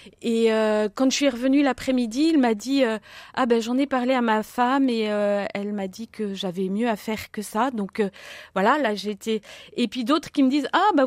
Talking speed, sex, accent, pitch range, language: 240 wpm, female, French, 220-285 Hz, French